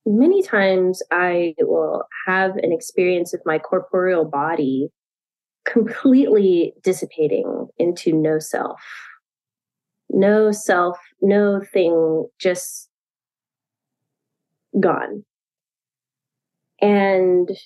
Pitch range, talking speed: 165-245 Hz, 80 wpm